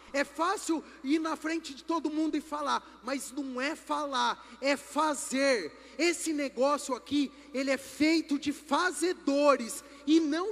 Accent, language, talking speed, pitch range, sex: Brazilian, Portuguese, 150 wpm, 250-320 Hz, male